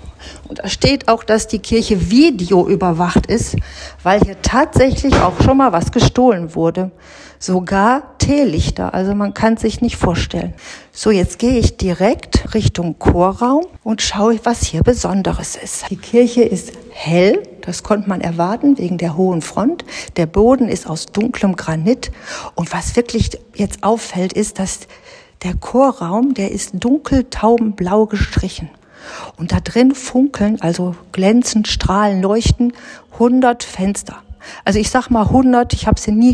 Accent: German